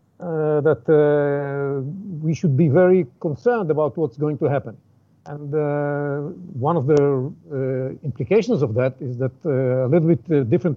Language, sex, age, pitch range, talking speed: English, male, 50-69, 140-180 Hz, 165 wpm